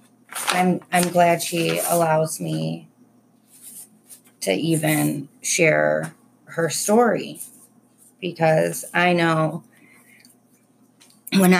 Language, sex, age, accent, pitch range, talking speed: English, female, 30-49, American, 155-215 Hz, 80 wpm